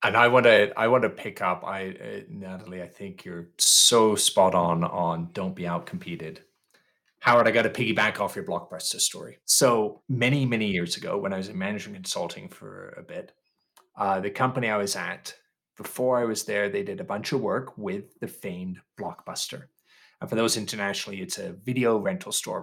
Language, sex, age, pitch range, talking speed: English, male, 30-49, 110-175 Hz, 200 wpm